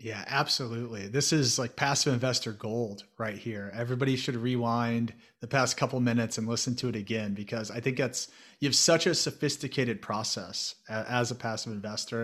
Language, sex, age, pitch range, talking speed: English, male, 30-49, 115-135 Hz, 175 wpm